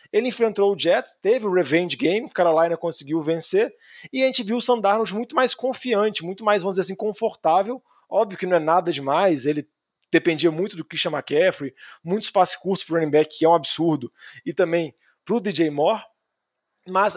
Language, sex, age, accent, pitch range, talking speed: Portuguese, male, 20-39, Brazilian, 165-220 Hz, 200 wpm